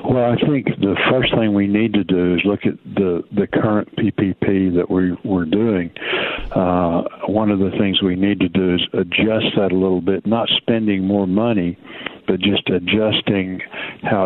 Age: 60-79